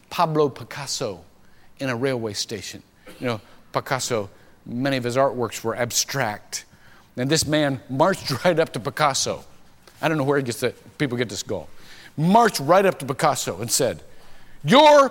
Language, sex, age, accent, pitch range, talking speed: English, male, 50-69, American, 140-235 Hz, 165 wpm